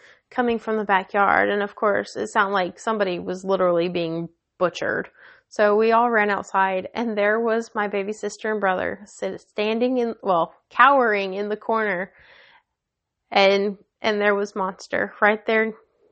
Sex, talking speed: female, 155 wpm